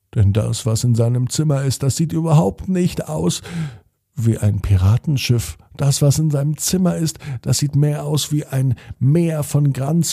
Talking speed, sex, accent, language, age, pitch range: 180 wpm, male, German, German, 50-69, 105-145 Hz